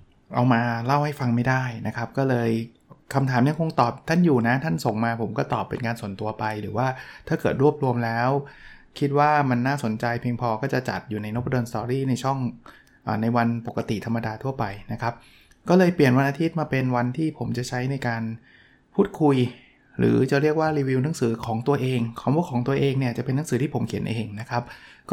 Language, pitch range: Thai, 115-140 Hz